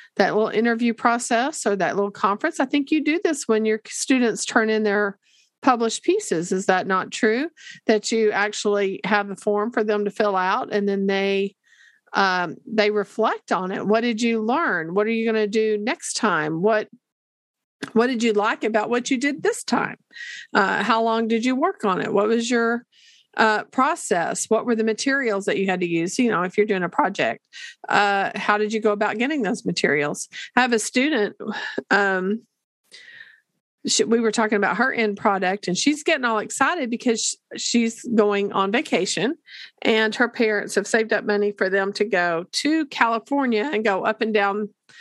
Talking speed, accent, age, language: 195 wpm, American, 50-69, English